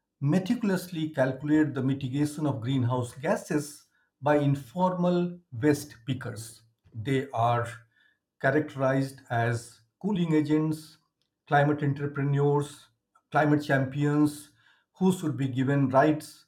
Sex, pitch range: male, 130-165 Hz